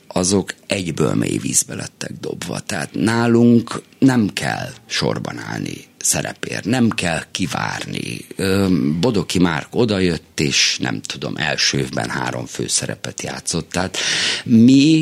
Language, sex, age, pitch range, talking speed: Hungarian, male, 50-69, 75-100 Hz, 115 wpm